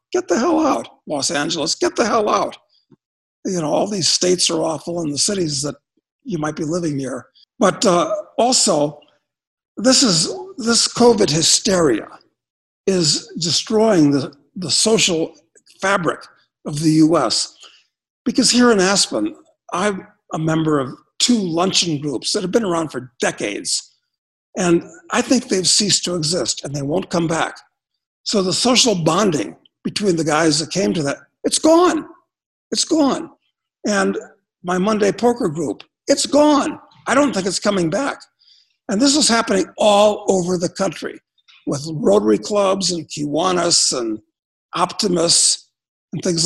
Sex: male